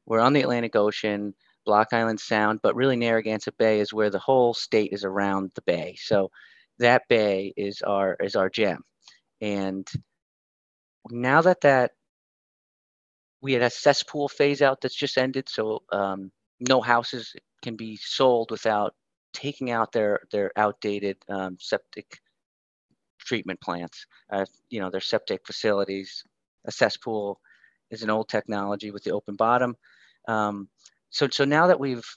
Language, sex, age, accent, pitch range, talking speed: English, male, 30-49, American, 100-125 Hz, 150 wpm